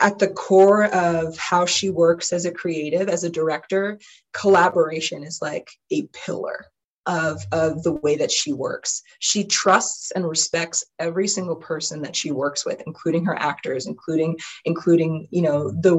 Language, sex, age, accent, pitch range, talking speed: English, female, 20-39, American, 160-195 Hz, 165 wpm